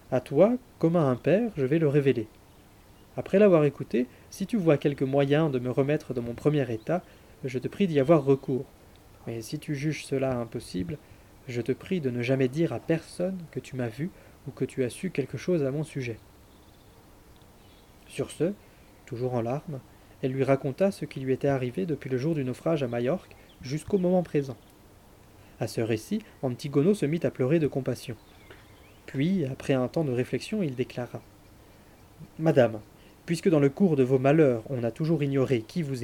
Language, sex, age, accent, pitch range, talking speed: French, male, 20-39, French, 115-155 Hz, 190 wpm